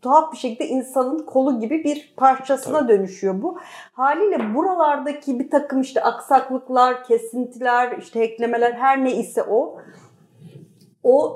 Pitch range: 205-270 Hz